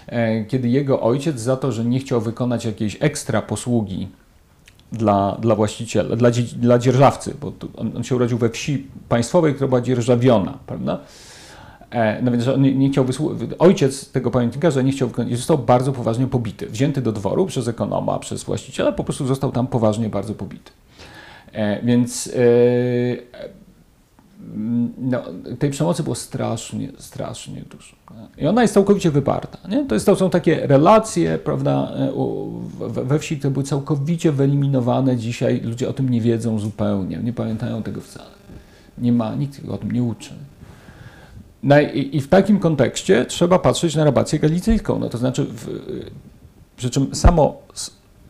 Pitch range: 115-140 Hz